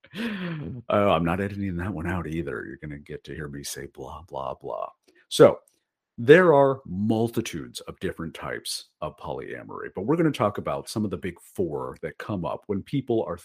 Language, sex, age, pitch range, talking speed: English, male, 50-69, 90-115 Hz, 190 wpm